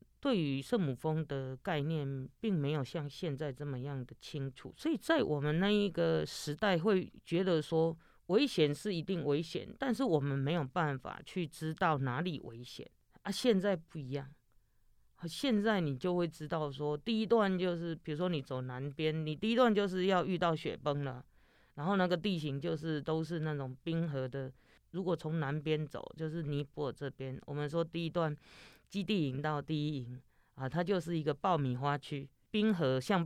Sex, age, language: female, 20-39, Chinese